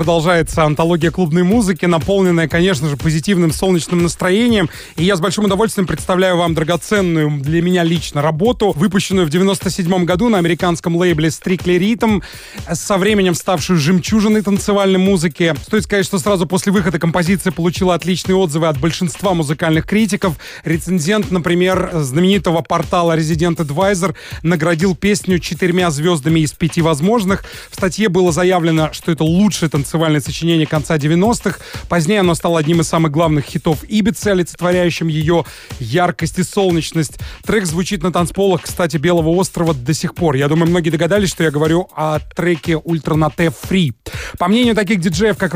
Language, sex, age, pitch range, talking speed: English, male, 30-49, 165-190 Hz, 155 wpm